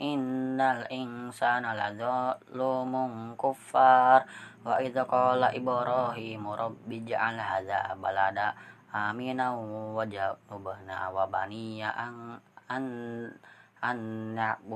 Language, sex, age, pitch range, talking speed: Indonesian, female, 20-39, 105-130 Hz, 55 wpm